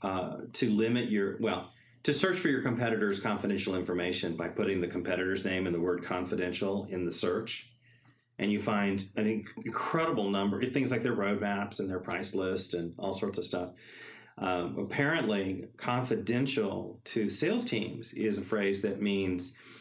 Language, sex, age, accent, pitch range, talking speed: English, male, 40-59, American, 90-115 Hz, 170 wpm